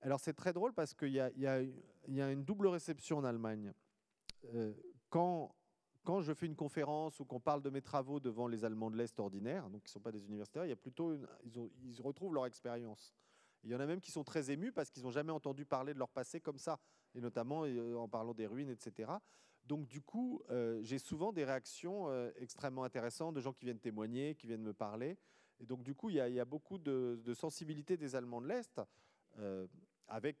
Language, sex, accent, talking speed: French, male, French, 215 wpm